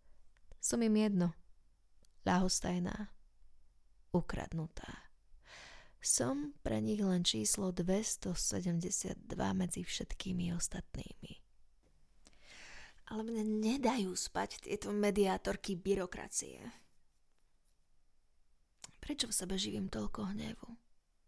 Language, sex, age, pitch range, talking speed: Slovak, female, 20-39, 185-235 Hz, 75 wpm